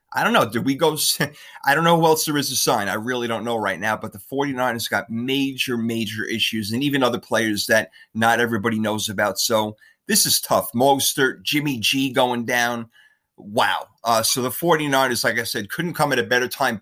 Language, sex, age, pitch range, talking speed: English, male, 30-49, 115-140 Hz, 215 wpm